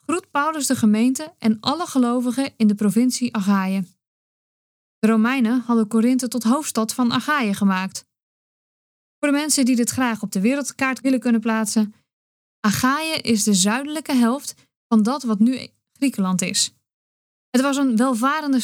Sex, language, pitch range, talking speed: female, Dutch, 220-275 Hz, 150 wpm